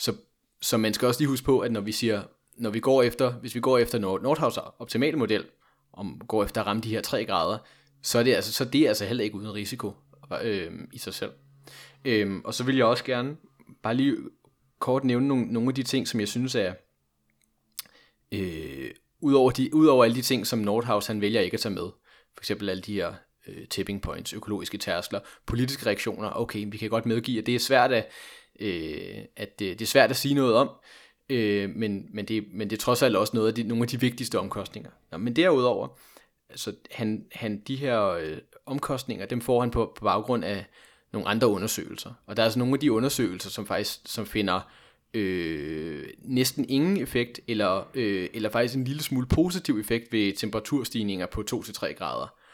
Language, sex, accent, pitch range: Danish, male, native, 105-130 Hz